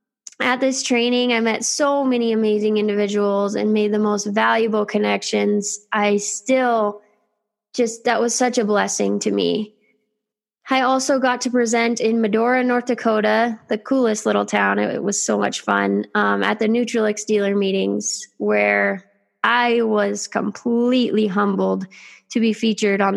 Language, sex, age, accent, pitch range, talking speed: English, female, 10-29, American, 205-225 Hz, 150 wpm